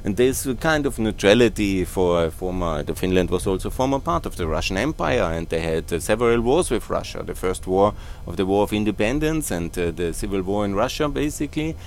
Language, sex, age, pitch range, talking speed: German, male, 30-49, 100-120 Hz, 205 wpm